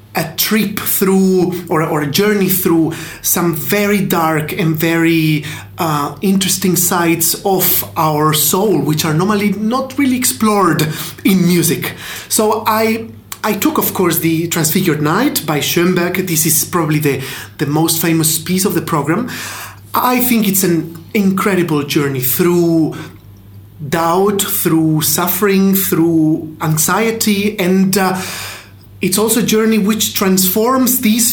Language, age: English, 30-49